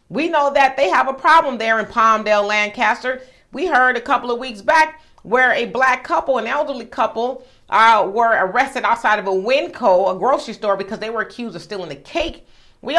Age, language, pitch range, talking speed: 40-59, English, 210-255 Hz, 205 wpm